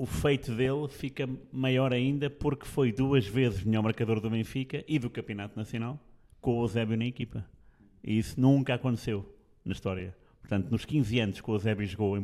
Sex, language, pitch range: male, Portuguese, 100-120 Hz